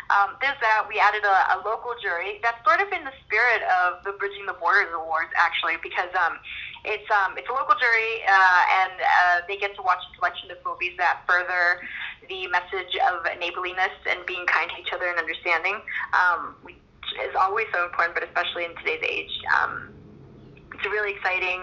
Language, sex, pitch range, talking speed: English, female, 175-220 Hz, 195 wpm